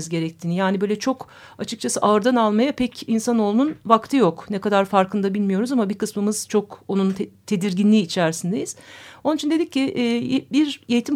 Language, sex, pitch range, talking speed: Turkish, female, 195-260 Hz, 160 wpm